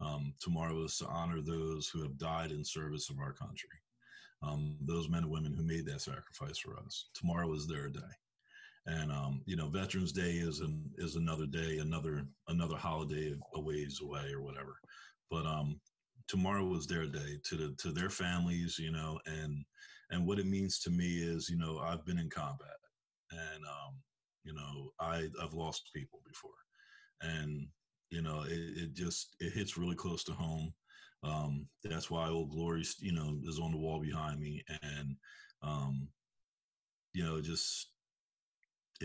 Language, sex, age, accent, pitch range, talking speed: English, male, 40-59, American, 75-85 Hz, 175 wpm